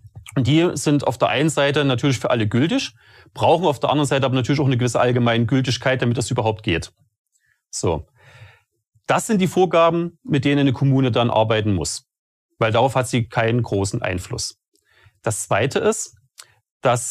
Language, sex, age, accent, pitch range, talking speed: German, male, 40-59, German, 115-150 Hz, 170 wpm